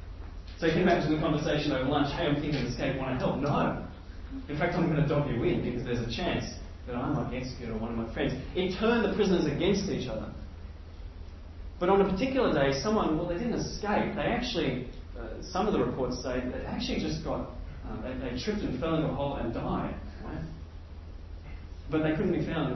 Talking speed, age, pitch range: 220 wpm, 30-49, 80-130 Hz